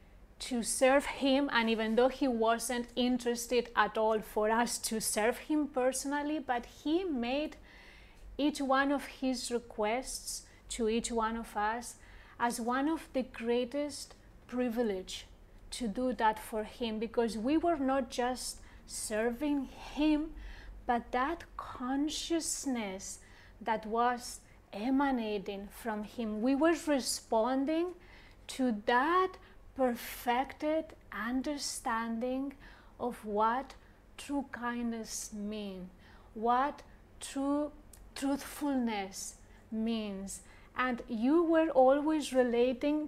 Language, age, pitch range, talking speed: English, 30-49, 225-275 Hz, 105 wpm